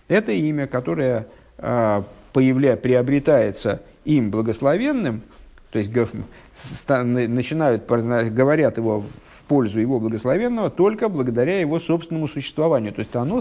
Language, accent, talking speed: Russian, native, 105 wpm